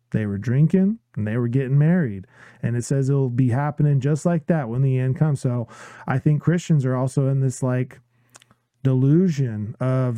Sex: male